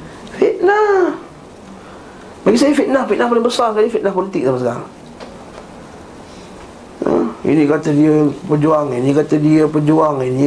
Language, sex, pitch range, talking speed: Malay, male, 150-225 Hz, 125 wpm